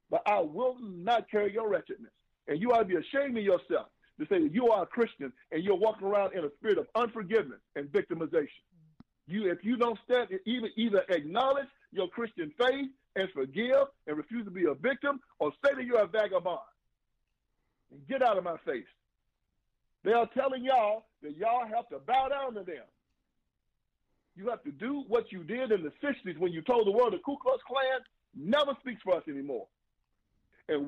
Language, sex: English, male